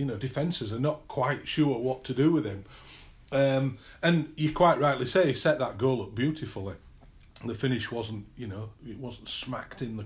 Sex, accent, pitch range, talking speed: male, British, 115-150 Hz, 205 wpm